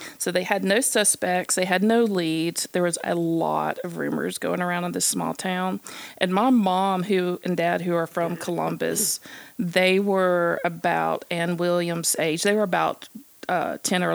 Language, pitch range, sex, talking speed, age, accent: English, 175-210 Hz, female, 180 wpm, 40-59, American